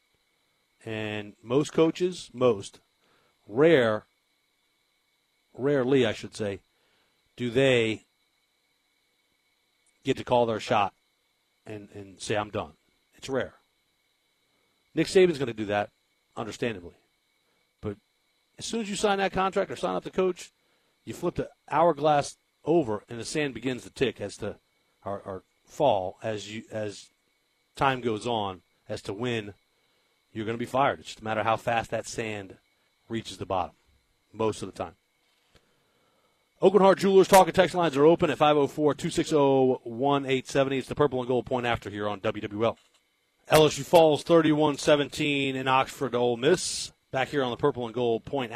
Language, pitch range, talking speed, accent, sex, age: English, 110-145 Hz, 155 wpm, American, male, 50-69